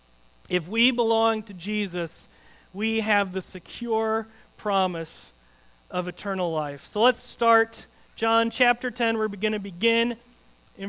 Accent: American